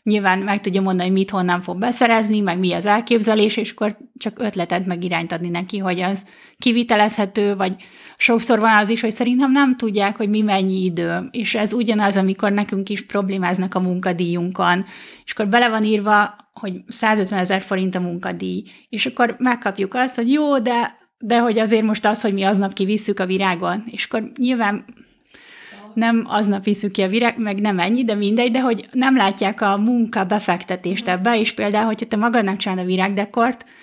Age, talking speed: 30-49, 185 wpm